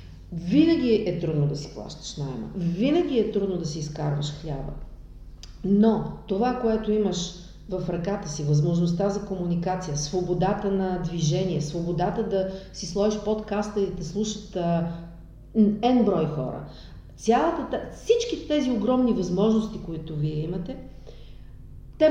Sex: female